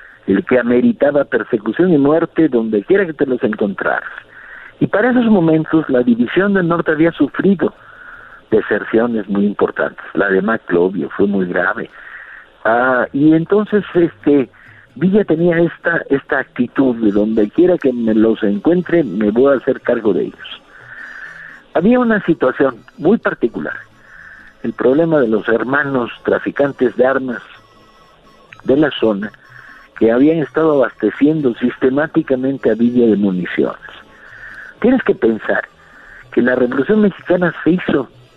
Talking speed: 140 wpm